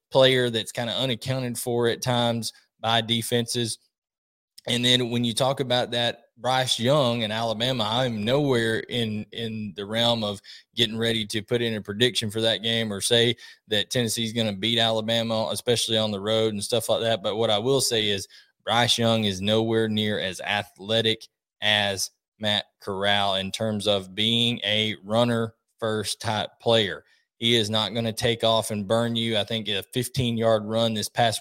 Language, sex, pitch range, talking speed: English, male, 105-120 Hz, 180 wpm